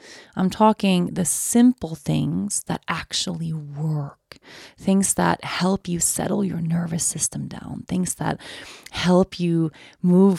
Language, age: English, 30-49